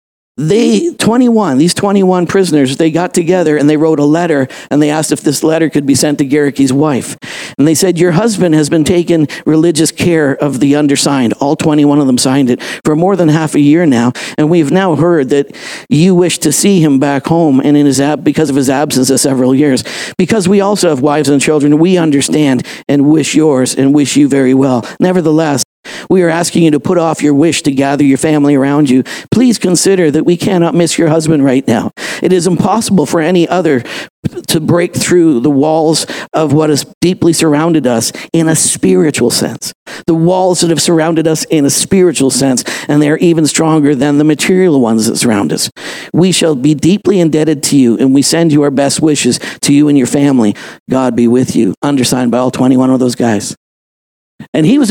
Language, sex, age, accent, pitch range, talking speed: English, male, 50-69, American, 140-175 Hz, 210 wpm